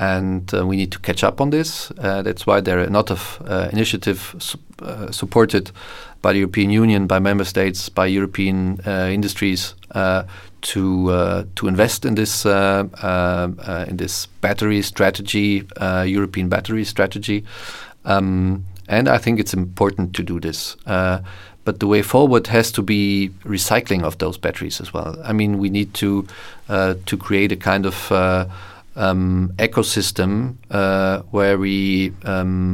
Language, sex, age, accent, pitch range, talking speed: French, male, 40-59, German, 95-105 Hz, 170 wpm